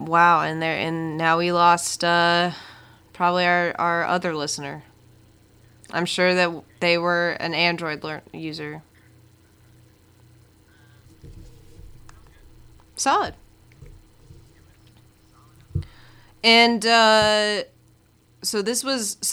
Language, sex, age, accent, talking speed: English, female, 20-39, American, 85 wpm